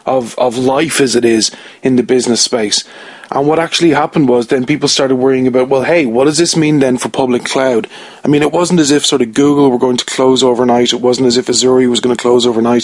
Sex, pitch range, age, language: male, 125-145 Hz, 30-49, English